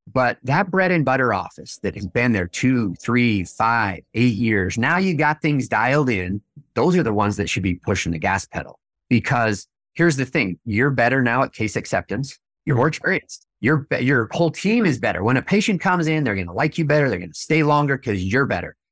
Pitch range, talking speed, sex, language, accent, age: 110-160 Hz, 220 wpm, male, English, American, 30-49